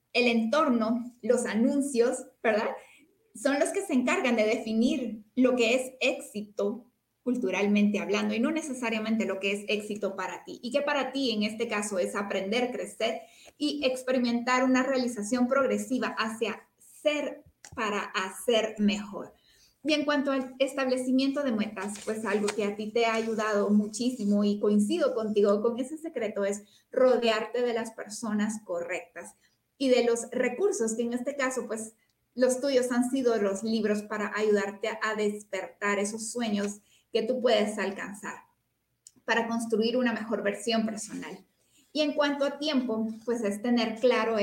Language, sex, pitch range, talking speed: Spanish, female, 210-255 Hz, 155 wpm